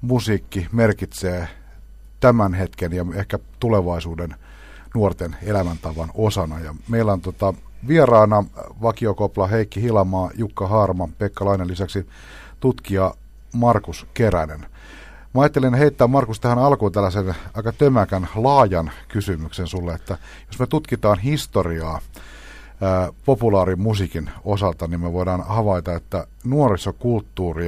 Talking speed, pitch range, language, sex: 115 wpm, 85-110 Hz, Finnish, male